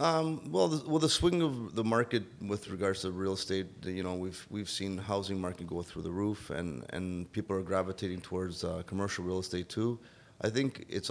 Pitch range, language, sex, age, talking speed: 90-110 Hz, English, male, 30-49, 210 wpm